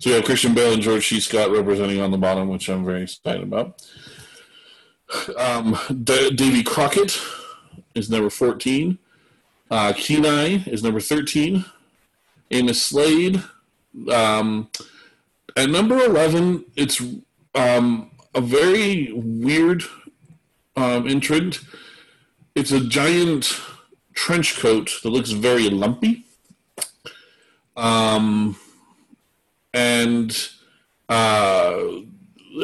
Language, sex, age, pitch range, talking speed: English, male, 30-49, 110-145 Hz, 100 wpm